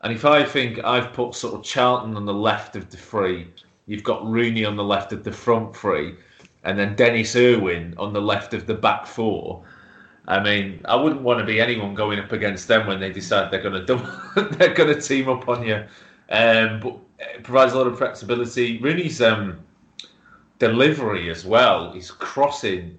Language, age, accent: English, 30-49, British